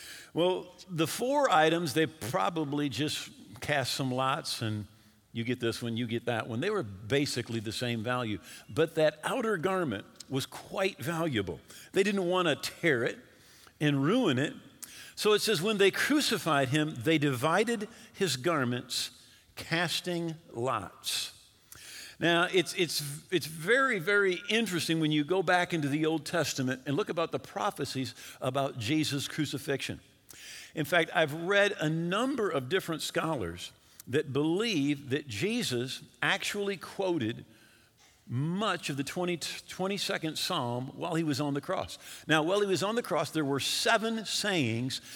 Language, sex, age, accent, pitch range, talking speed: English, male, 50-69, American, 130-180 Hz, 150 wpm